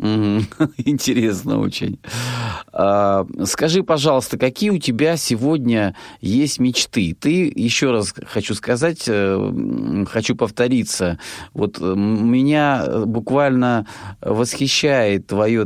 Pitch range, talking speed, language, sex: 105-135 Hz, 85 wpm, Russian, male